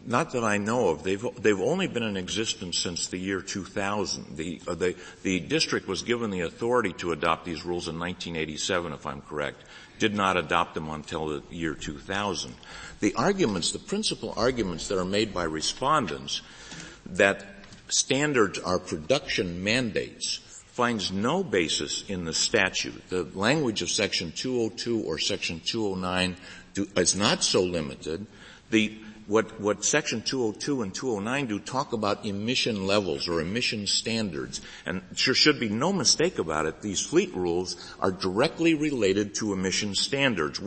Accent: American